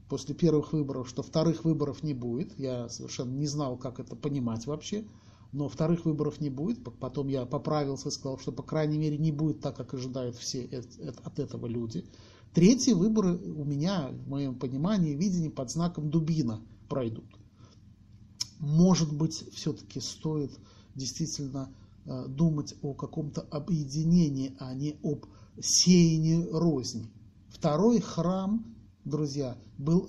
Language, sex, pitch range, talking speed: Russian, male, 120-175 Hz, 140 wpm